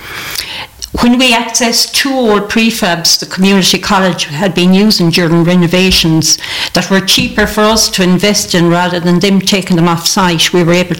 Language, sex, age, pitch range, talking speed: English, female, 60-79, 175-205 Hz, 175 wpm